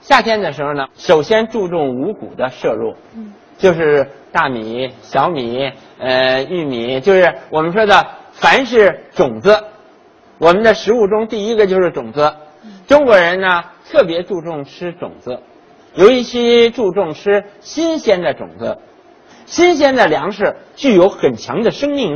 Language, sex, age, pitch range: Chinese, male, 50-69, 165-250 Hz